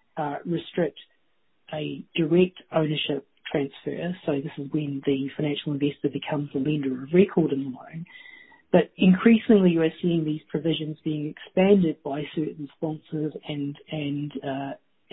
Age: 40-59